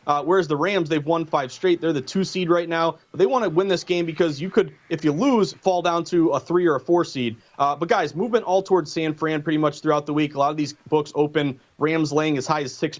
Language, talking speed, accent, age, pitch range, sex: English, 275 wpm, American, 30-49, 150-185 Hz, male